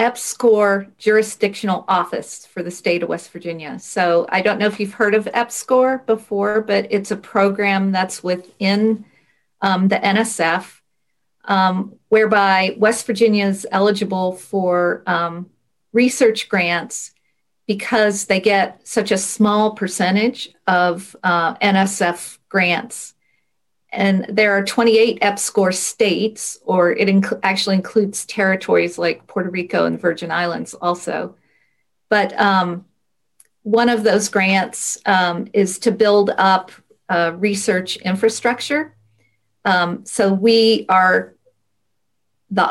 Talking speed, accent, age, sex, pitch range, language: 120 wpm, American, 40-59, female, 185-215 Hz, English